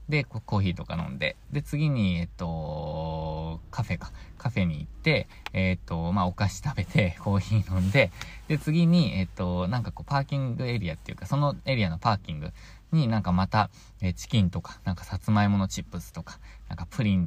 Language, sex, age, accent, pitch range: Japanese, male, 20-39, native, 90-130 Hz